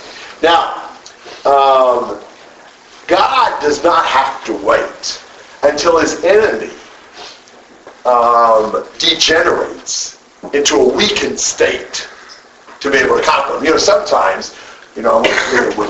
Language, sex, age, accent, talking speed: English, male, 50-69, American, 110 wpm